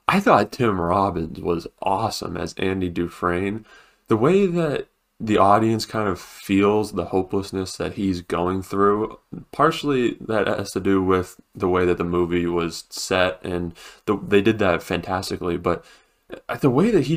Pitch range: 90-110 Hz